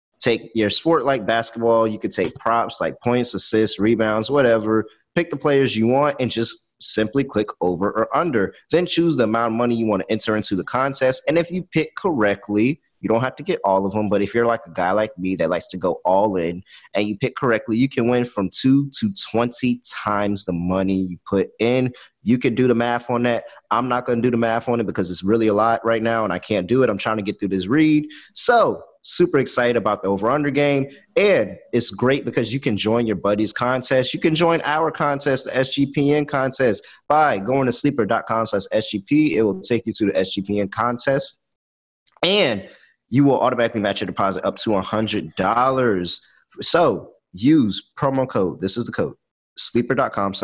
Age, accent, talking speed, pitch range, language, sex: 30-49, American, 210 wpm, 105-130 Hz, English, male